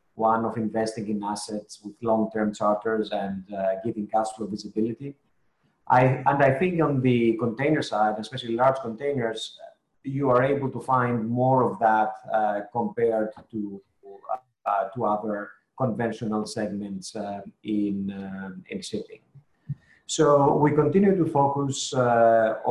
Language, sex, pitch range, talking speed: English, male, 110-130 Hz, 135 wpm